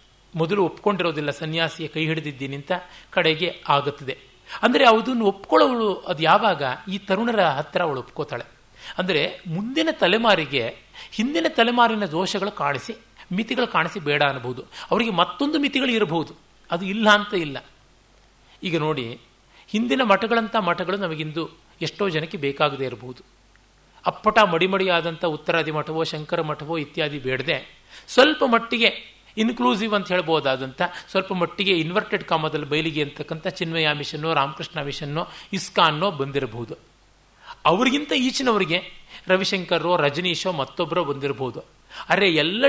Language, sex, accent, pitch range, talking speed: Kannada, male, native, 150-205 Hz, 110 wpm